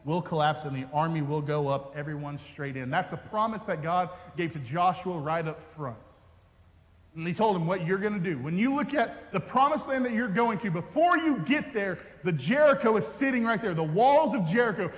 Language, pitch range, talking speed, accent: English, 155-220 Hz, 220 wpm, American